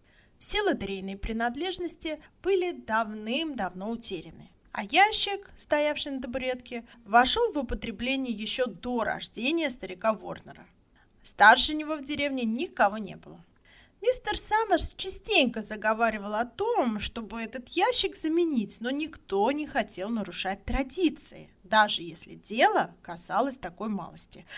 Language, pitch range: Russian, 210-335 Hz